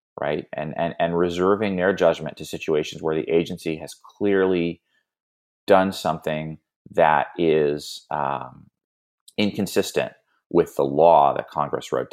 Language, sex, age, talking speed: English, male, 30-49, 130 wpm